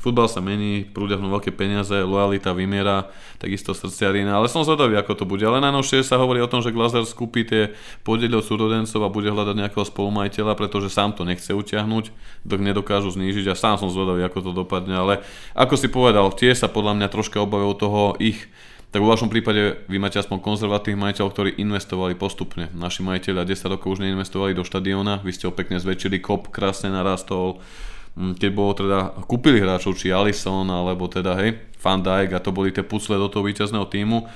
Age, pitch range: 20-39, 95-110 Hz